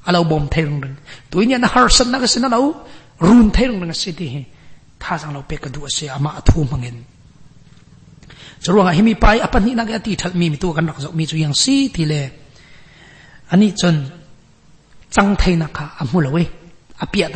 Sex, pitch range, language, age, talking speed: male, 145-205 Hz, English, 40-59, 160 wpm